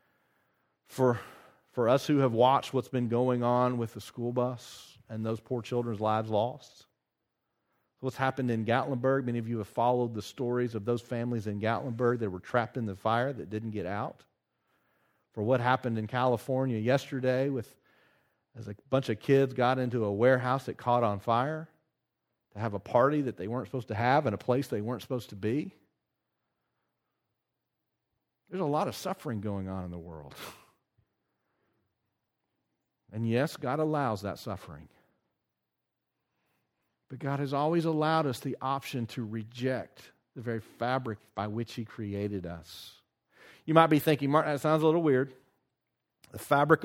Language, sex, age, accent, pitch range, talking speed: English, male, 40-59, American, 115-145 Hz, 165 wpm